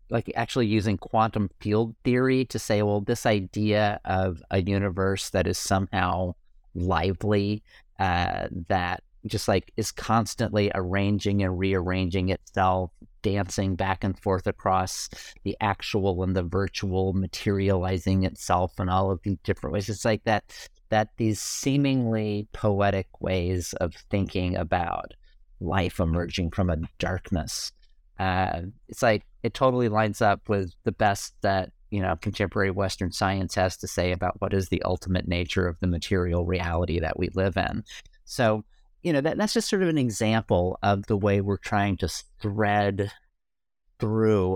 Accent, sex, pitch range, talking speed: American, male, 90-105 Hz, 155 wpm